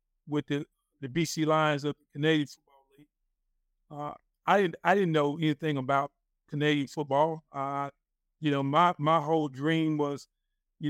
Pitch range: 145-160 Hz